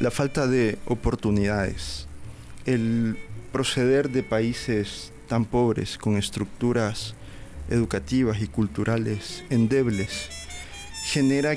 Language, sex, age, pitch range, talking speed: Spanish, male, 40-59, 105-130 Hz, 90 wpm